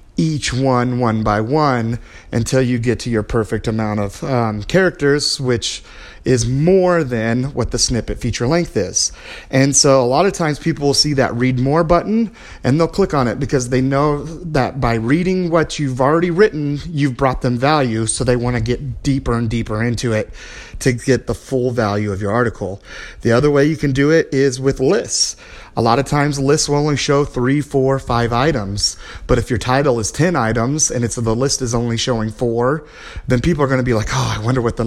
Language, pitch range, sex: English, 115-145 Hz, male